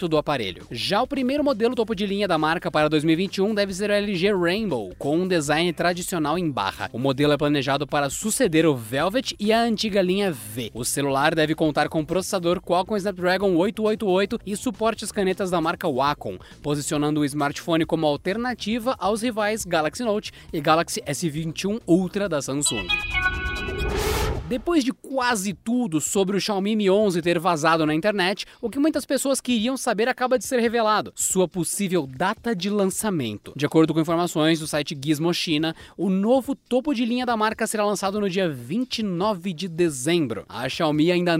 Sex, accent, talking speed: male, Brazilian, 175 wpm